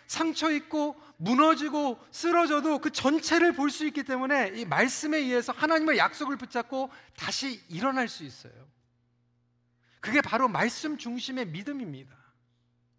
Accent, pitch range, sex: native, 170-270 Hz, male